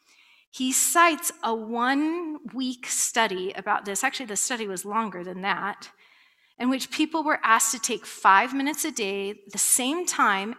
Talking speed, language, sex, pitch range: 160 wpm, English, female, 220-295 Hz